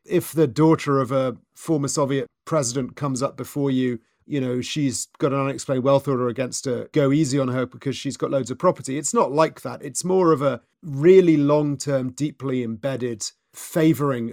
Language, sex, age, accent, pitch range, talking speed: English, male, 40-59, British, 125-150 Hz, 190 wpm